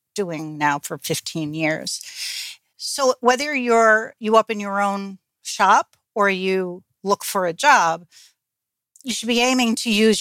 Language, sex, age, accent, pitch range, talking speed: English, female, 60-79, American, 175-235 Hz, 155 wpm